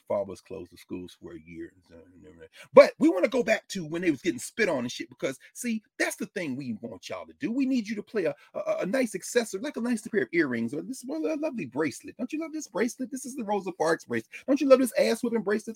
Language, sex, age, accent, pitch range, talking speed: English, male, 30-49, American, 195-300 Hz, 275 wpm